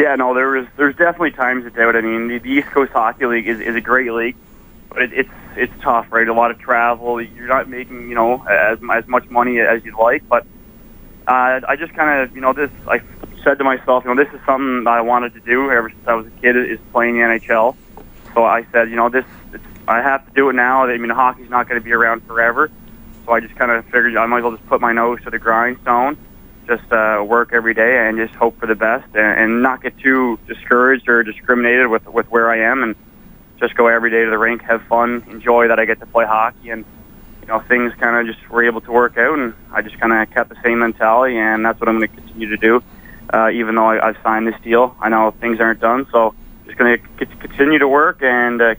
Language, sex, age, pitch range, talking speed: English, male, 20-39, 115-125 Hz, 255 wpm